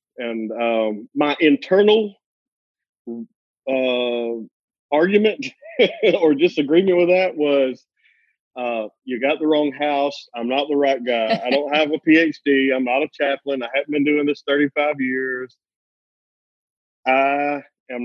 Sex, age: male, 40-59